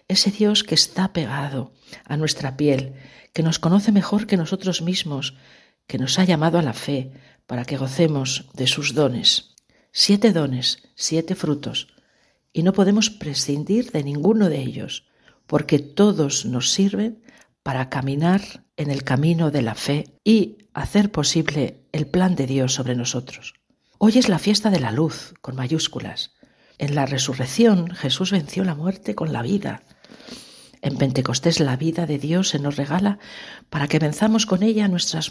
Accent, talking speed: Spanish, 160 wpm